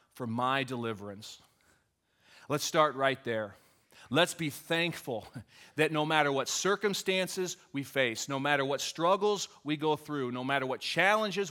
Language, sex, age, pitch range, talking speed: English, male, 30-49, 120-165 Hz, 145 wpm